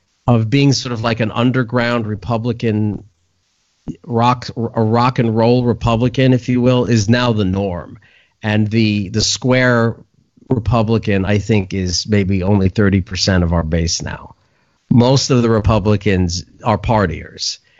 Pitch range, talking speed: 105-130 Hz, 150 wpm